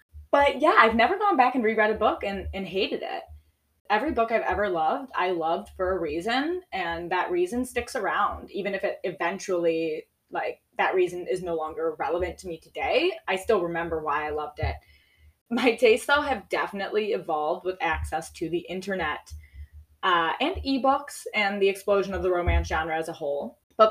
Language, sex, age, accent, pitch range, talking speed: English, female, 10-29, American, 165-230 Hz, 190 wpm